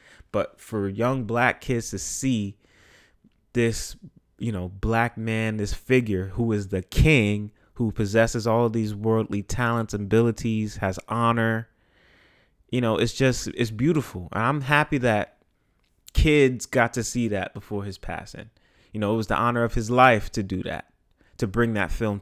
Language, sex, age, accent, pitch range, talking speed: English, male, 30-49, American, 100-125 Hz, 170 wpm